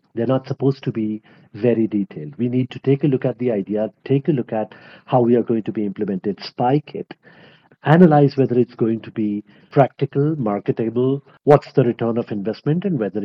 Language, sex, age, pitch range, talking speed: English, male, 50-69, 110-145 Hz, 200 wpm